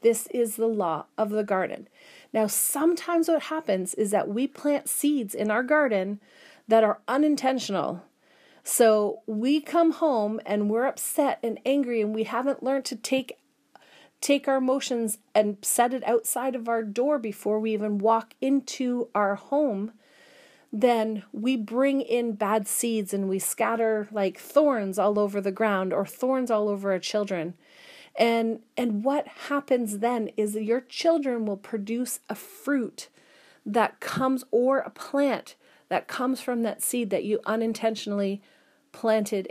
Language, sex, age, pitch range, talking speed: English, female, 40-59, 210-265 Hz, 155 wpm